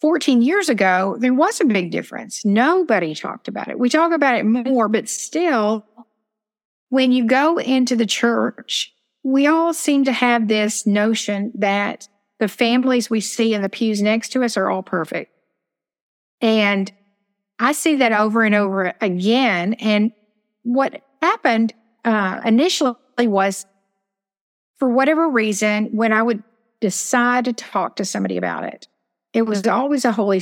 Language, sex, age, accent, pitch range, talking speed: English, female, 50-69, American, 205-245 Hz, 155 wpm